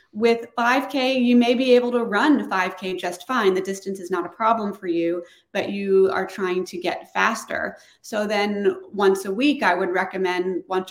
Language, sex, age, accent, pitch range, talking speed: English, female, 30-49, American, 185-240 Hz, 195 wpm